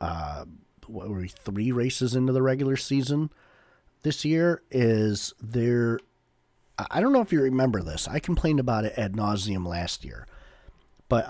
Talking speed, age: 160 wpm, 40-59